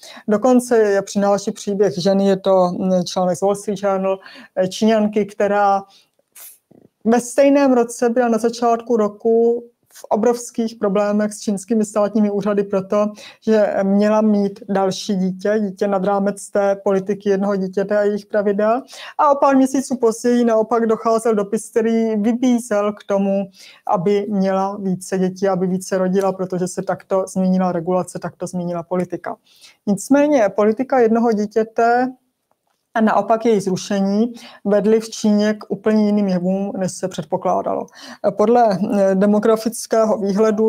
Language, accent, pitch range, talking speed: Czech, native, 190-220 Hz, 130 wpm